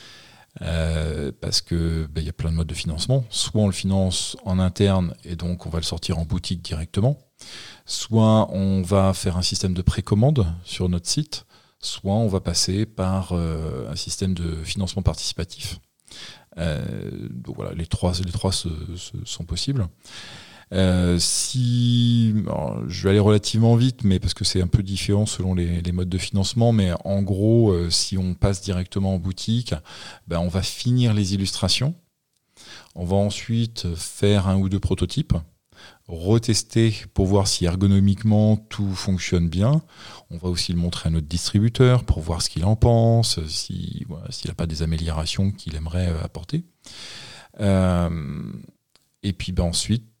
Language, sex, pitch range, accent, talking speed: French, male, 85-110 Hz, French, 165 wpm